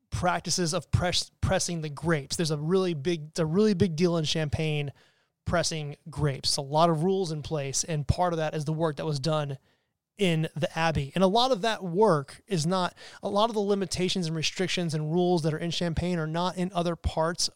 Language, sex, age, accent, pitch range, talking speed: English, male, 30-49, American, 155-185 Hz, 215 wpm